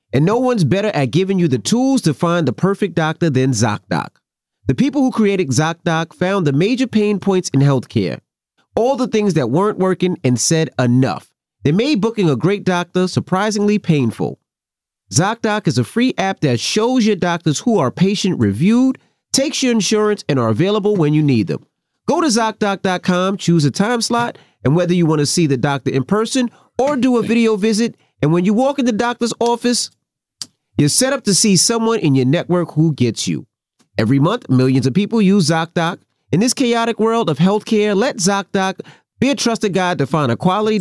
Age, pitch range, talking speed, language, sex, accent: 30-49, 150-215 Hz, 195 wpm, English, male, American